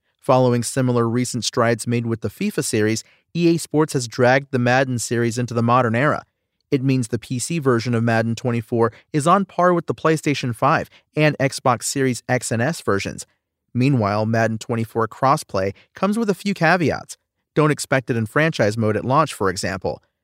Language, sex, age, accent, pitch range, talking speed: English, male, 40-59, American, 115-150 Hz, 180 wpm